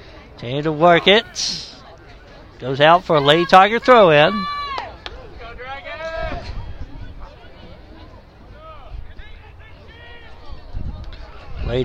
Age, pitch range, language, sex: 60-79, 135-200 Hz, English, male